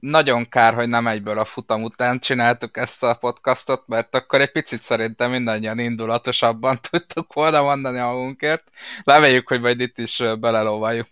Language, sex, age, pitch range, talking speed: Hungarian, male, 20-39, 115-140 Hz, 160 wpm